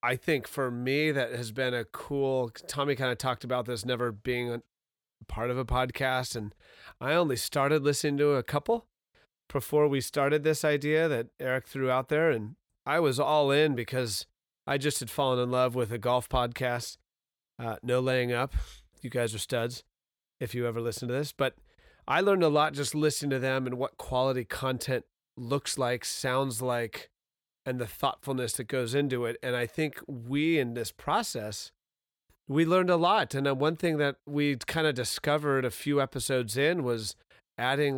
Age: 30-49